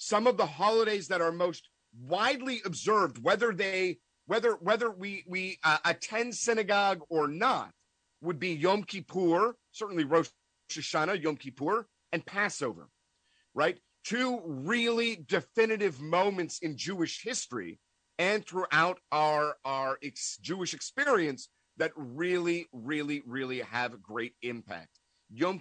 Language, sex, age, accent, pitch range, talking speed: English, male, 50-69, American, 135-190 Hz, 130 wpm